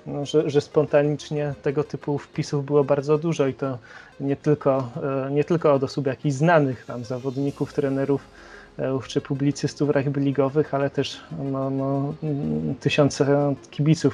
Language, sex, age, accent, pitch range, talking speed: Polish, male, 30-49, native, 135-150 Hz, 145 wpm